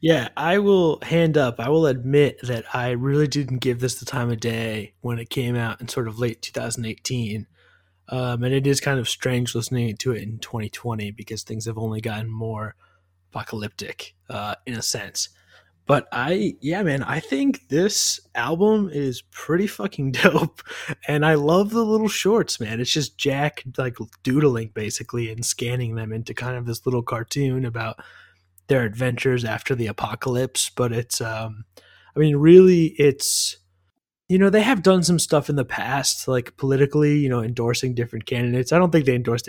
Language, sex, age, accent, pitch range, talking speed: English, male, 20-39, American, 115-140 Hz, 180 wpm